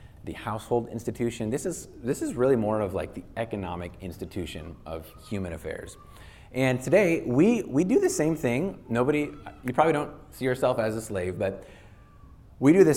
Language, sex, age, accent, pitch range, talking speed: English, male, 30-49, American, 95-120 Hz, 175 wpm